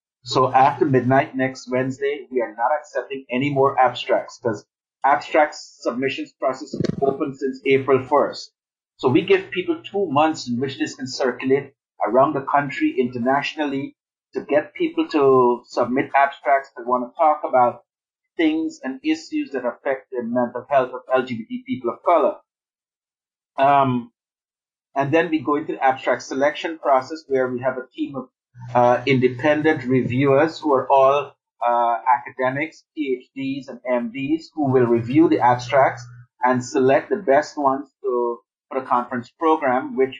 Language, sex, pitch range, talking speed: English, male, 125-160 Hz, 155 wpm